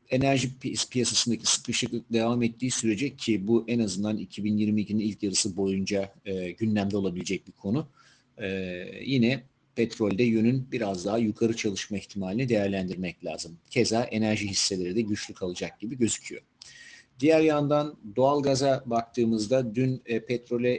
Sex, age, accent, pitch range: male, 50-69, native, 105-130 Hz